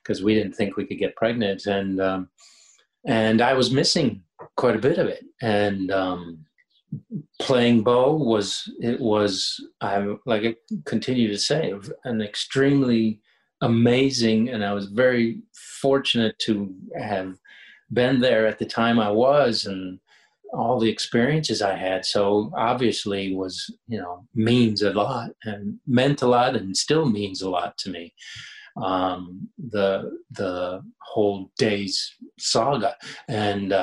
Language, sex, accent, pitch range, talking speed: English, male, American, 100-120 Hz, 145 wpm